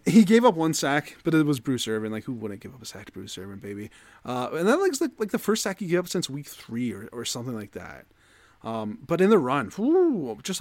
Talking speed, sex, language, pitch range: 270 wpm, male, English, 110-155 Hz